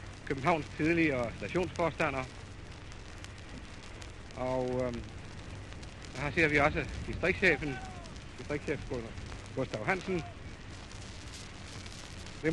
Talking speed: 75 wpm